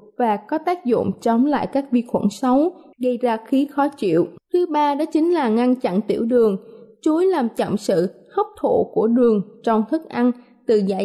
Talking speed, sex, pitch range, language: 200 wpm, female, 220-300 Hz, Vietnamese